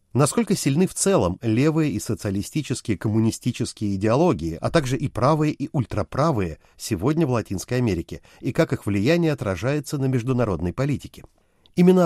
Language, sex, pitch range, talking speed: Russian, male, 105-150 Hz, 140 wpm